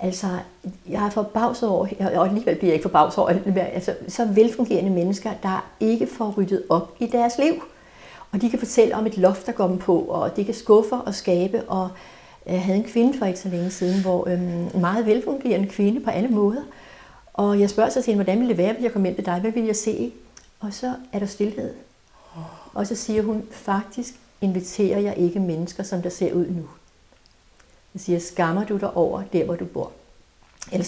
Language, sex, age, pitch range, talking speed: Danish, female, 60-79, 180-220 Hz, 210 wpm